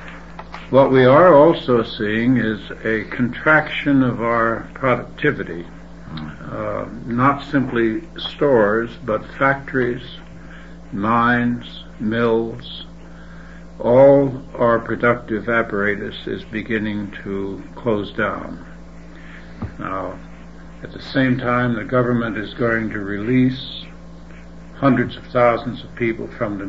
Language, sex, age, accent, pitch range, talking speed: English, male, 60-79, American, 110-140 Hz, 105 wpm